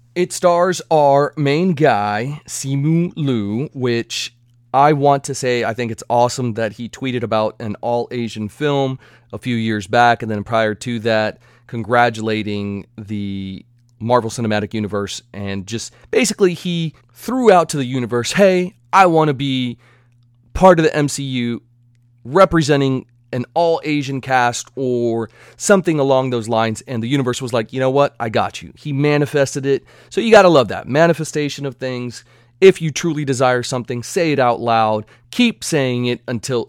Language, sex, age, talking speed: English, male, 30-49, 165 wpm